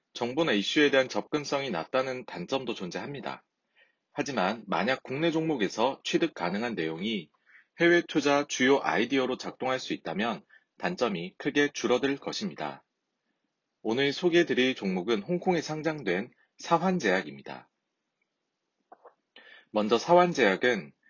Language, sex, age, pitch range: Korean, male, 30-49, 115-160 Hz